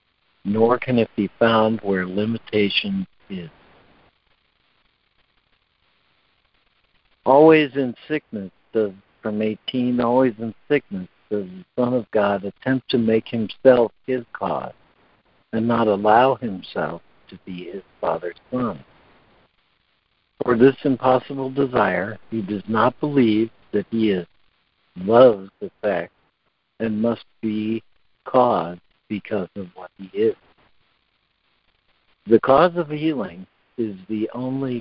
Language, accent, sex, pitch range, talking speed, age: English, American, male, 105-130 Hz, 115 wpm, 60-79